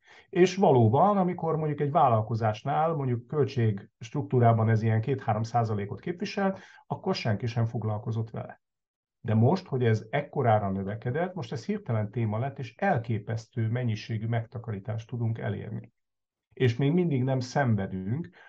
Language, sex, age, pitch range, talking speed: English, male, 50-69, 110-135 Hz, 125 wpm